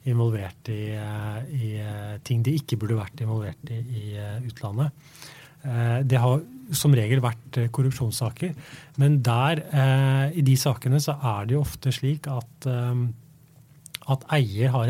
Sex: male